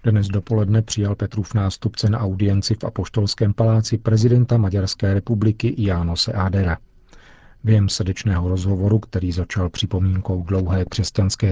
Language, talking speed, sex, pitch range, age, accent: Czech, 120 wpm, male, 95-110 Hz, 40-59, native